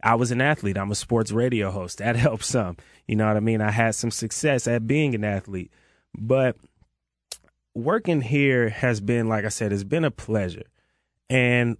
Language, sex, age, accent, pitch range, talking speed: English, male, 30-49, American, 95-120 Hz, 195 wpm